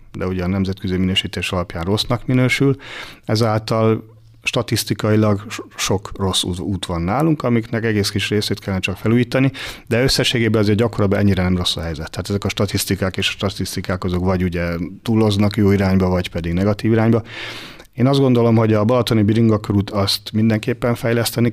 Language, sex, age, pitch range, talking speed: Hungarian, male, 40-59, 100-115 Hz, 160 wpm